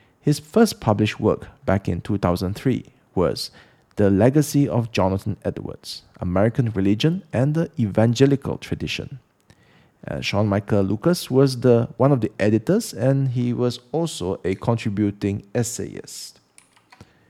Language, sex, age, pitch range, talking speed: English, male, 40-59, 105-135 Hz, 125 wpm